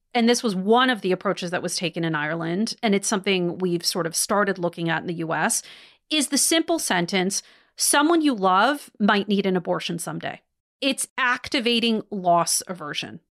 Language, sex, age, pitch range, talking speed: English, female, 40-59, 185-245 Hz, 180 wpm